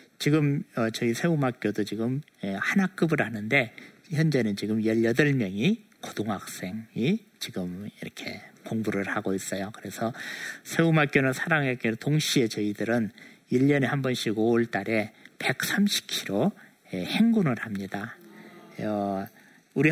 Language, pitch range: Korean, 110-155 Hz